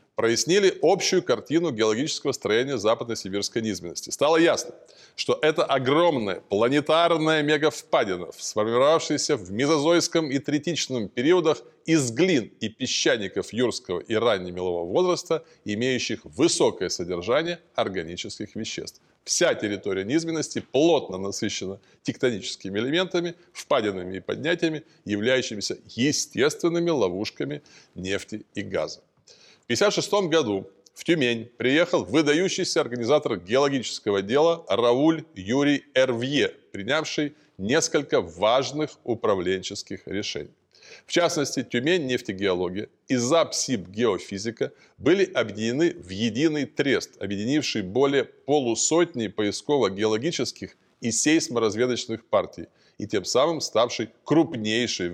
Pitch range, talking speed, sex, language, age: 110-160 Hz, 100 wpm, male, Russian, 20-39